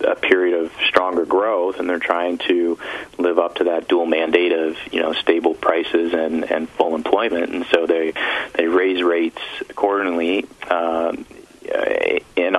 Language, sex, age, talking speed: English, male, 30-49, 155 wpm